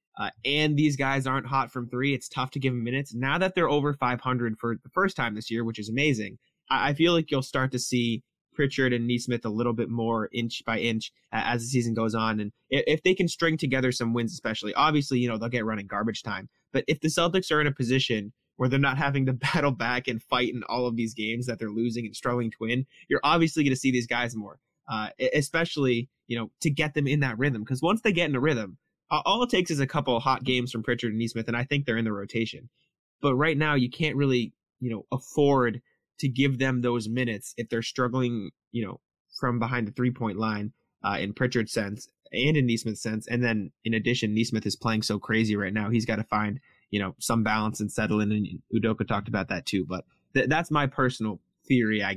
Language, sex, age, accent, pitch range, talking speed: English, male, 20-39, American, 115-140 Hz, 240 wpm